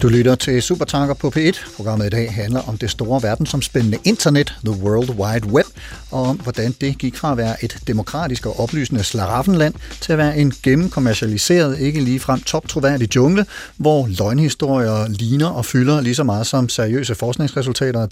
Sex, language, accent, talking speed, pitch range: male, Danish, native, 180 wpm, 115-155 Hz